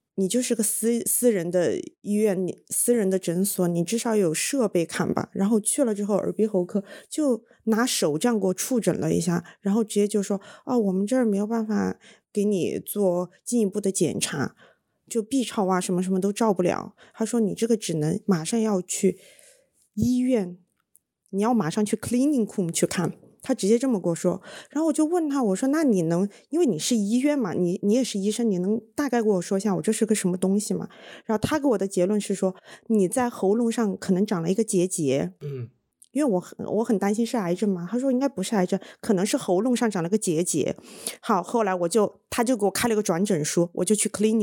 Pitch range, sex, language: 190-235 Hz, female, Chinese